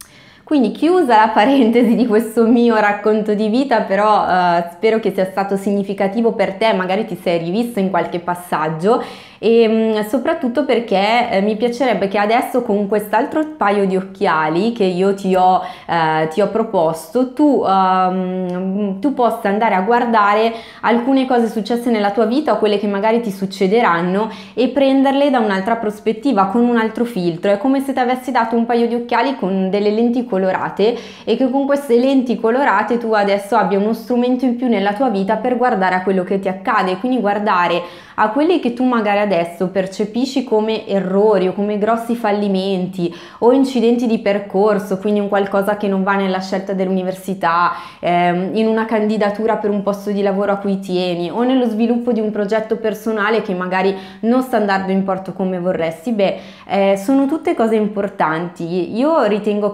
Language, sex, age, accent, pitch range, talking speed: Italian, female, 20-39, native, 190-235 Hz, 175 wpm